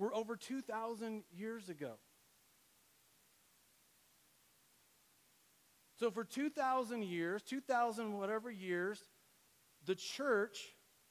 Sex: male